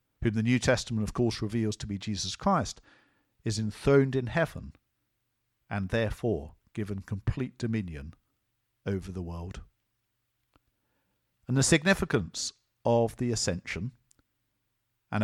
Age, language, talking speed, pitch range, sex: 50-69, English, 120 wpm, 100-130 Hz, male